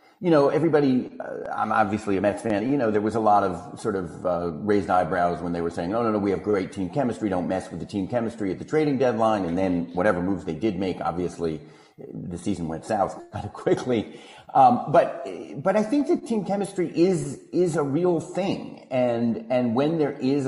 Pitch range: 95-150 Hz